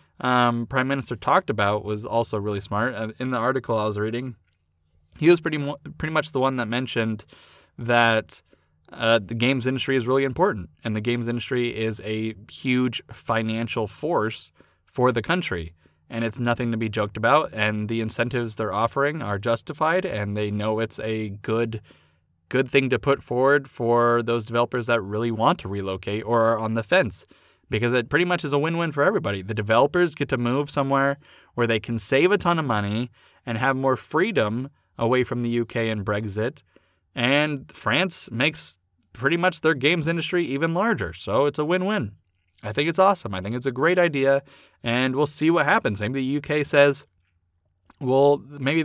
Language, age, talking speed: English, 20-39, 185 wpm